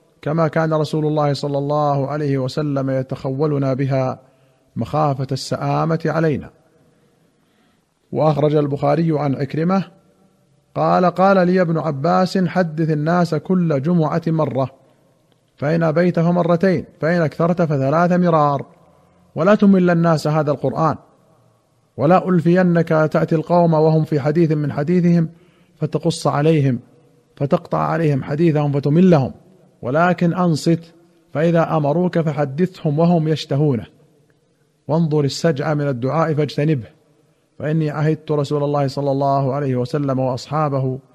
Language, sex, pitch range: Arabic, male, 145-170 Hz